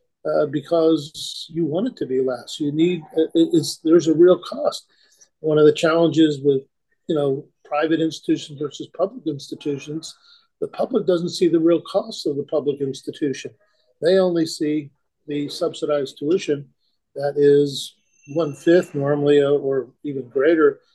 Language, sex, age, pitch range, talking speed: English, male, 50-69, 145-175 Hz, 155 wpm